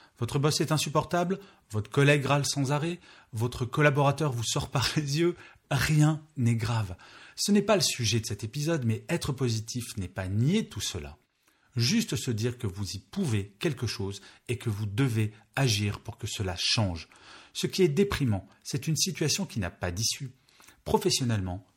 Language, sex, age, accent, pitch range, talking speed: French, male, 40-59, French, 100-140 Hz, 180 wpm